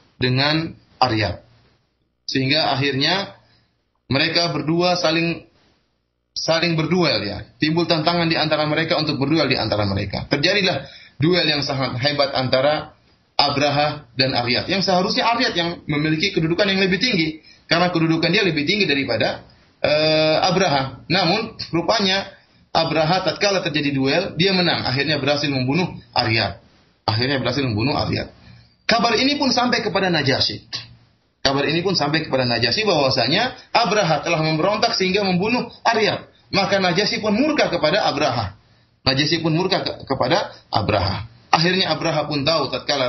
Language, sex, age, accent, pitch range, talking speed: Indonesian, male, 30-49, native, 130-175 Hz, 135 wpm